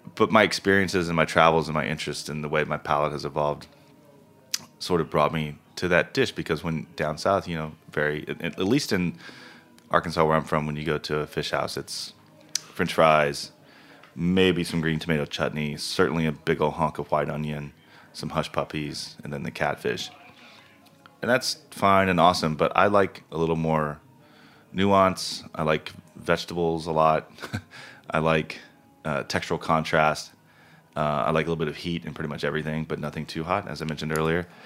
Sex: male